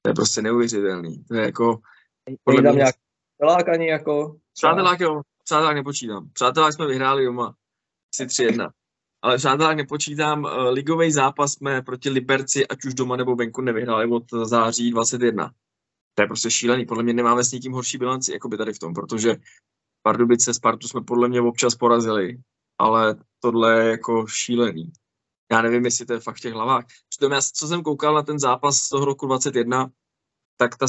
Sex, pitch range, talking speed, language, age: male, 120-135 Hz, 165 wpm, Czech, 20-39